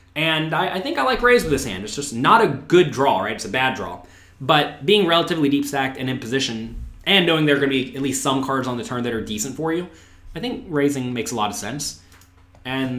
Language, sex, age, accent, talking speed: English, male, 20-39, American, 260 wpm